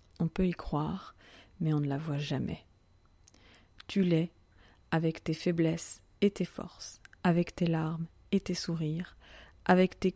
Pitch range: 155-190 Hz